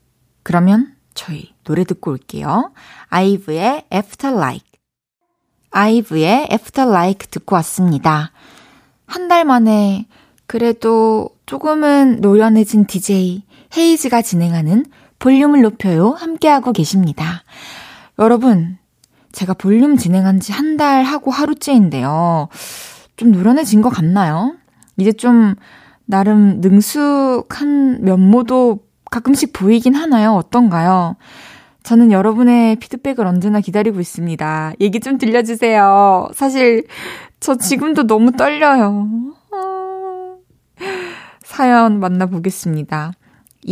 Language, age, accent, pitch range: Korean, 20-39, native, 185-260 Hz